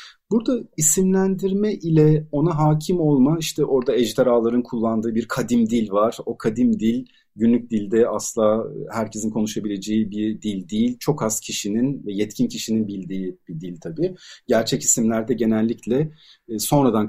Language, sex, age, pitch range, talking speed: Turkish, male, 40-59, 105-155 Hz, 135 wpm